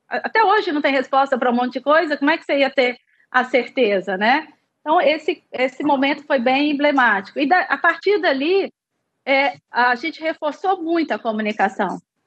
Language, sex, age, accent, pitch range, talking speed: Portuguese, female, 30-49, Brazilian, 245-335 Hz, 185 wpm